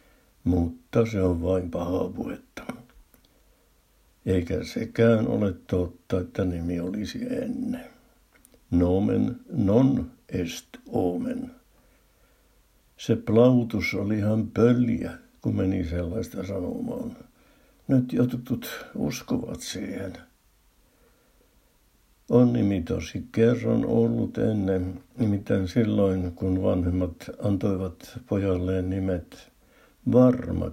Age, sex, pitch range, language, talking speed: 60-79, male, 95-120 Hz, Finnish, 90 wpm